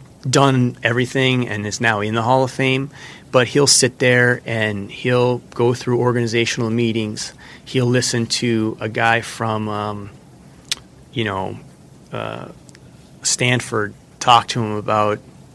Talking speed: 135 wpm